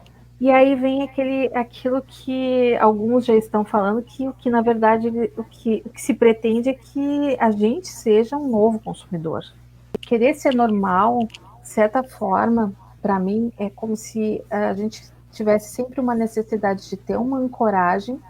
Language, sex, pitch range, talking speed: Portuguese, female, 190-235 Hz, 165 wpm